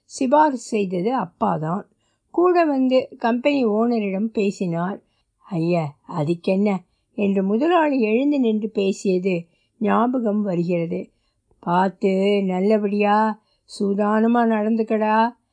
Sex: female